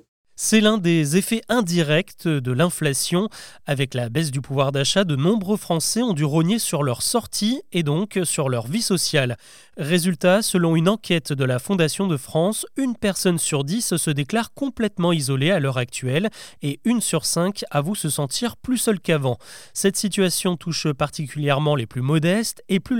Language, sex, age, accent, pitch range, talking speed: French, male, 30-49, French, 145-200 Hz, 175 wpm